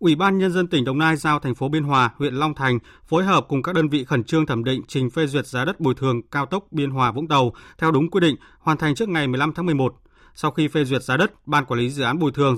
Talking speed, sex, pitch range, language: 290 wpm, male, 130-160 Hz, Vietnamese